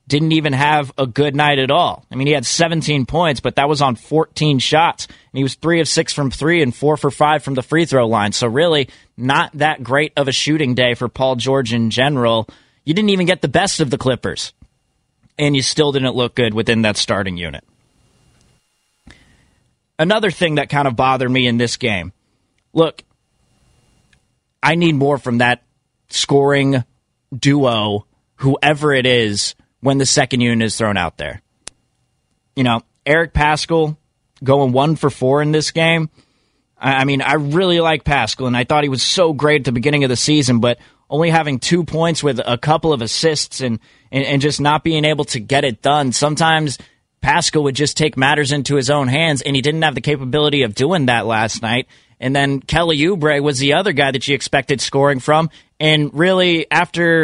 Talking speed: 195 wpm